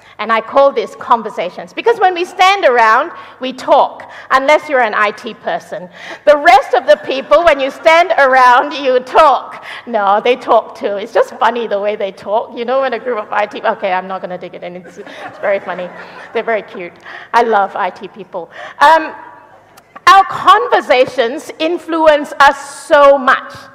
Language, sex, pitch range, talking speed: English, female, 210-310 Hz, 180 wpm